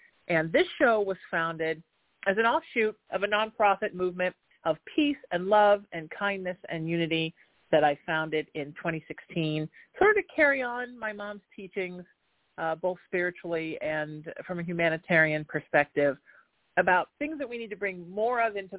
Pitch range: 165-210 Hz